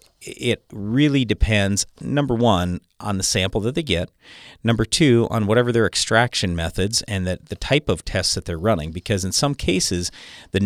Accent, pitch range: American, 90-125 Hz